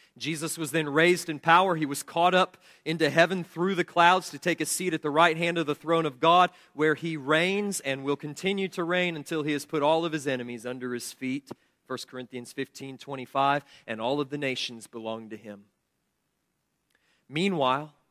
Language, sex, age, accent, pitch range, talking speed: English, male, 40-59, American, 130-165 Hz, 200 wpm